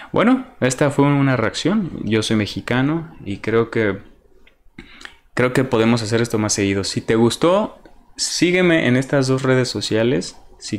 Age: 20-39